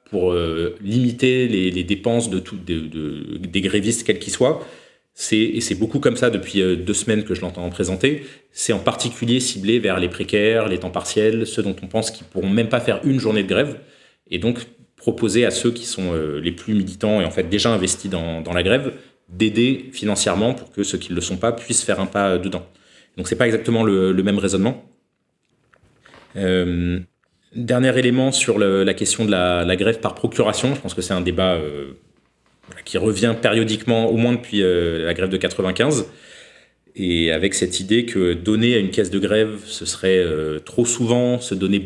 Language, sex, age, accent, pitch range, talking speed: French, male, 30-49, French, 90-115 Hz, 210 wpm